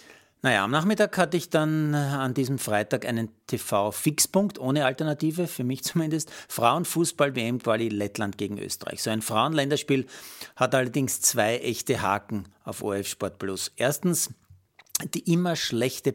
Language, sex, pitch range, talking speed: German, male, 115-150 Hz, 135 wpm